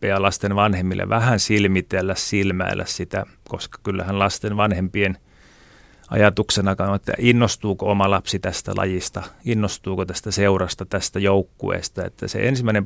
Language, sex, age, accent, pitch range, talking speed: Finnish, male, 30-49, native, 95-110 Hz, 125 wpm